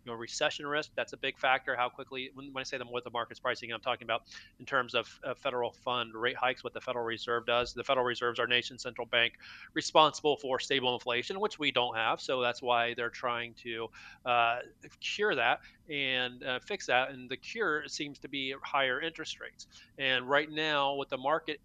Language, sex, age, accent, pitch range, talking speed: English, male, 30-49, American, 120-140 Hz, 215 wpm